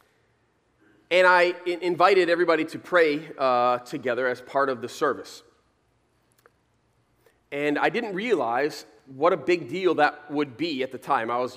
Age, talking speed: 30-49, 150 wpm